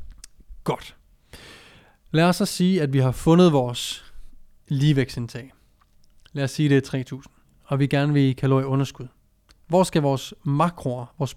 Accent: native